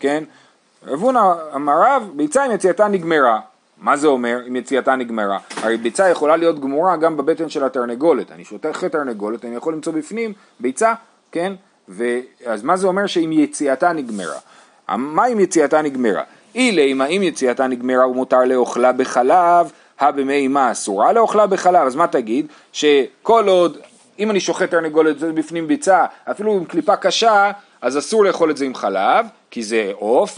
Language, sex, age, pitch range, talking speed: Hebrew, male, 30-49, 135-200 Hz, 150 wpm